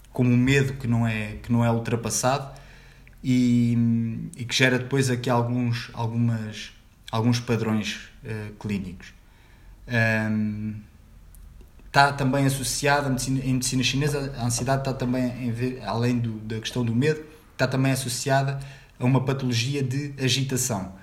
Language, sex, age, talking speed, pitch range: Portuguese, male, 20-39, 115 wpm, 115-135 Hz